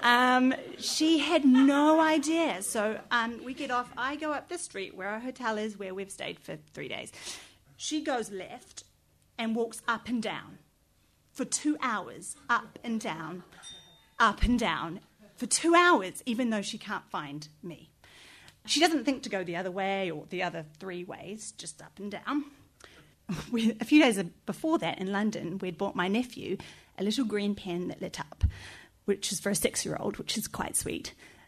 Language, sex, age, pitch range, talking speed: English, female, 30-49, 205-300 Hz, 180 wpm